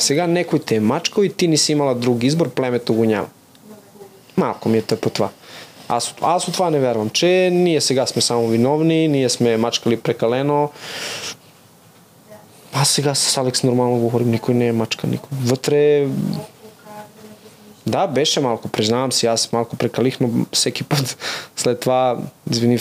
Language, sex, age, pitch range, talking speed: Bulgarian, male, 20-39, 115-150 Hz, 165 wpm